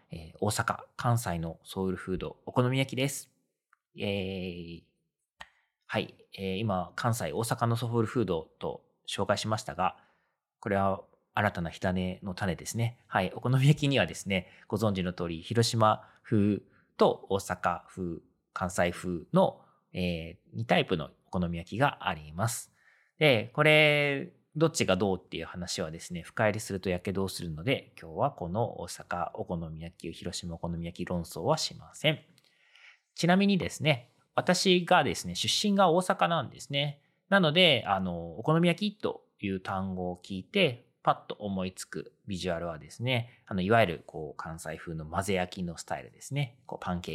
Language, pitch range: Japanese, 90-130 Hz